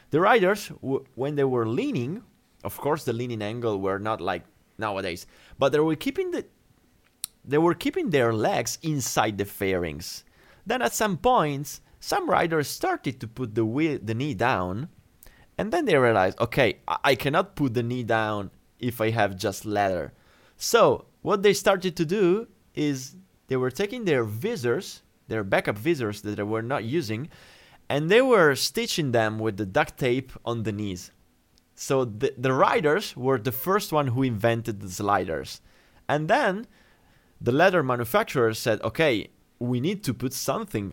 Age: 30-49